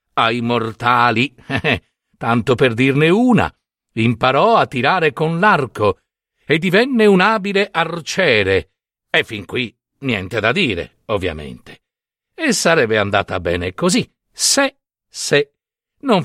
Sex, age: male, 60-79